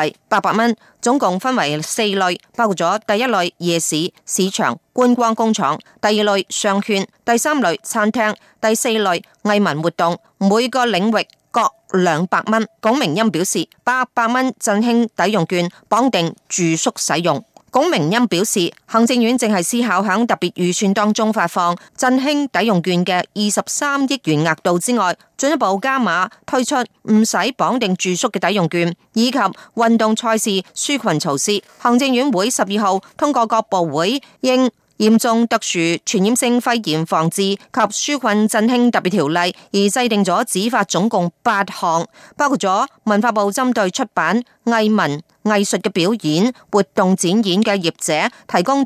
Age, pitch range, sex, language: 30-49, 180-235 Hz, female, Chinese